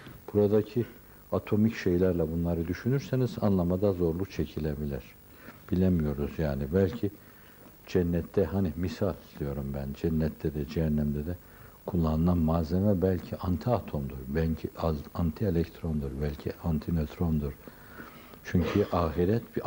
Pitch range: 75-105 Hz